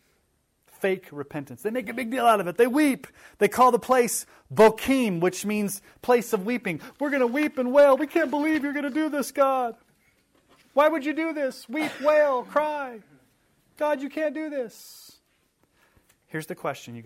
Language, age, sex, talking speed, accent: English, 30-49, male, 190 wpm, American